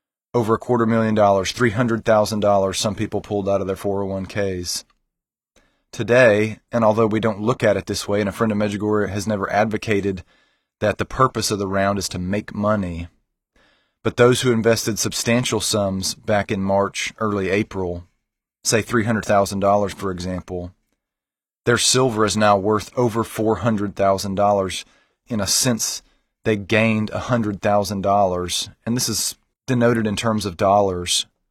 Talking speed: 145 wpm